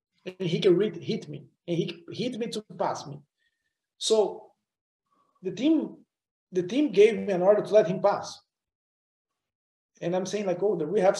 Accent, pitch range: Brazilian, 175-235 Hz